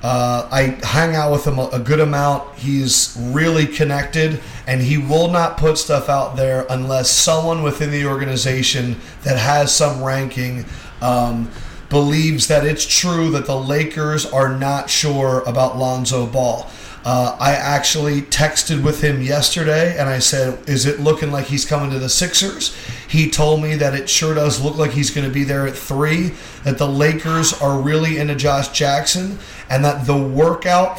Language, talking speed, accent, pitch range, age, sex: English, 175 wpm, American, 135-155 Hz, 40-59, male